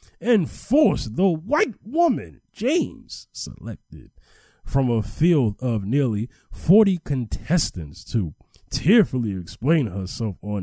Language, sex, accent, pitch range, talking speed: English, male, American, 90-125 Hz, 100 wpm